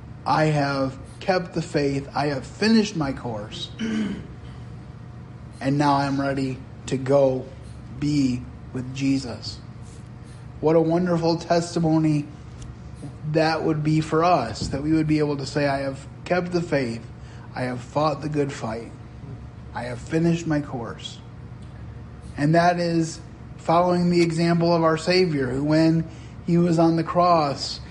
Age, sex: 30-49, male